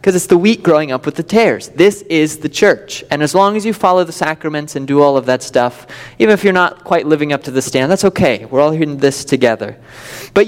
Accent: American